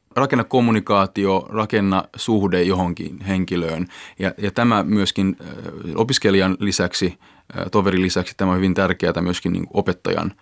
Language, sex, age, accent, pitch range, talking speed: Finnish, male, 30-49, native, 90-100 Hz, 120 wpm